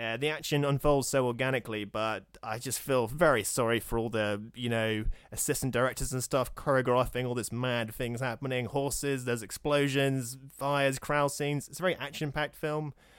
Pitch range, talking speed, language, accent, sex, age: 115-140 Hz, 175 wpm, English, British, male, 20-39